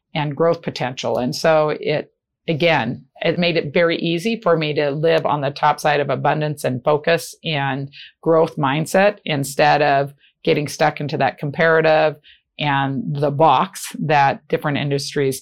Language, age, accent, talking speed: English, 50-69, American, 155 wpm